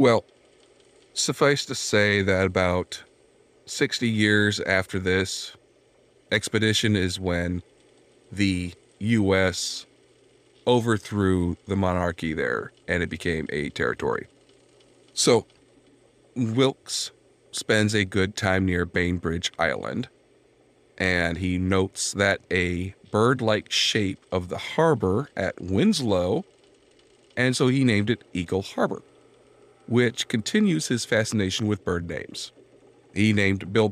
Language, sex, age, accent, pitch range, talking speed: English, male, 40-59, American, 95-120 Hz, 110 wpm